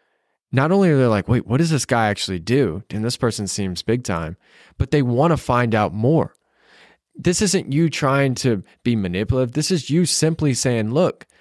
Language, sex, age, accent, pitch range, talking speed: English, male, 20-39, American, 105-135 Hz, 200 wpm